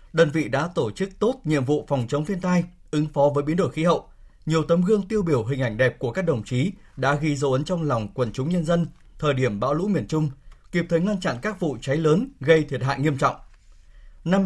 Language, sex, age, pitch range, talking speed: Vietnamese, male, 20-39, 135-175 Hz, 255 wpm